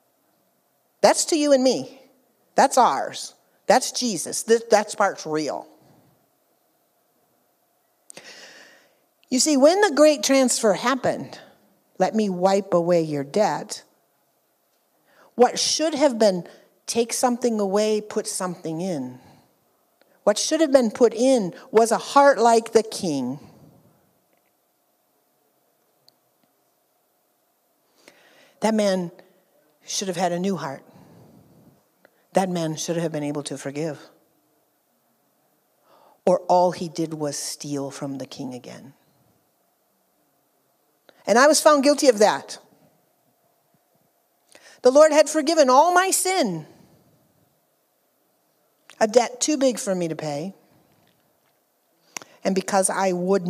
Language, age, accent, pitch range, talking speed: English, 50-69, American, 170-255 Hz, 110 wpm